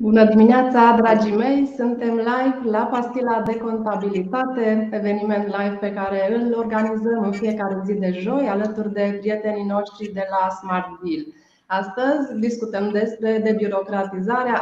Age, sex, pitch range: 20-39, female, 200-230 Hz